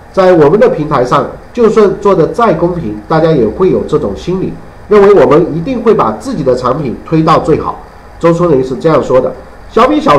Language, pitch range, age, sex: Chinese, 160-230 Hz, 50-69, male